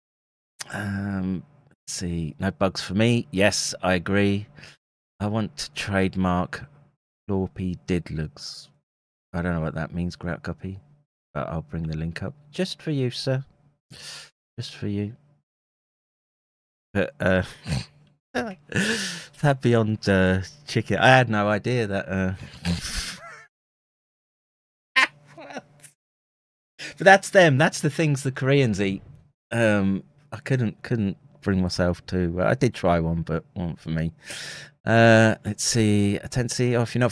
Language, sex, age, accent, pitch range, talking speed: English, male, 30-49, British, 95-130 Hz, 135 wpm